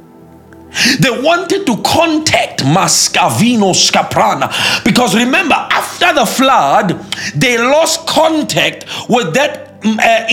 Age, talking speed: 50-69, 100 wpm